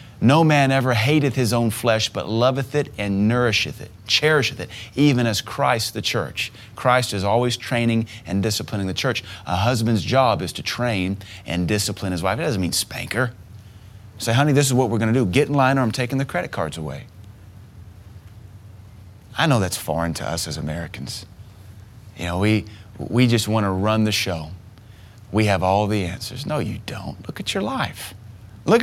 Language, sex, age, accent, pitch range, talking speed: English, male, 30-49, American, 100-120 Hz, 190 wpm